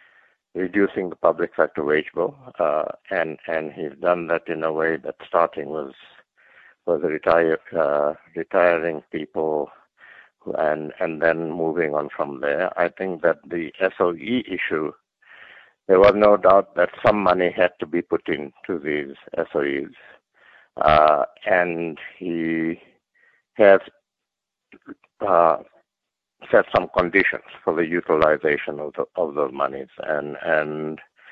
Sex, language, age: male, English, 60-79